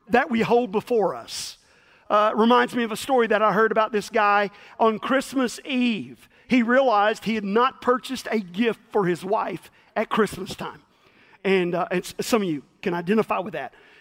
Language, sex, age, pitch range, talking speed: English, male, 40-59, 215-265 Hz, 190 wpm